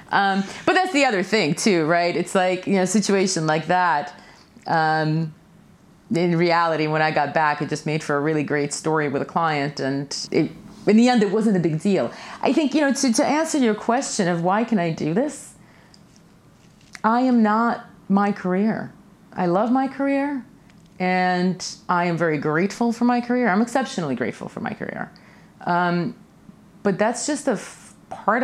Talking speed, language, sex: 185 wpm, English, female